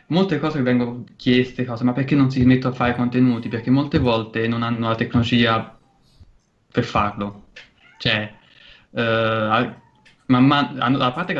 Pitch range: 110-130 Hz